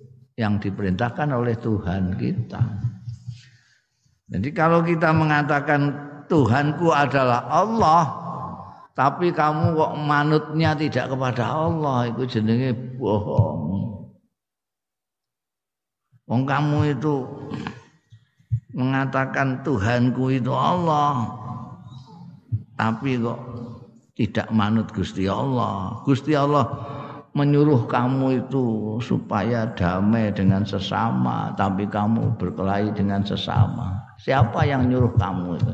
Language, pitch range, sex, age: Indonesian, 115-145 Hz, male, 50-69